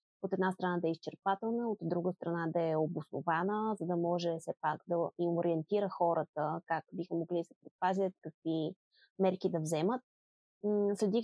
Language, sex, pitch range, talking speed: Bulgarian, female, 170-200 Hz, 170 wpm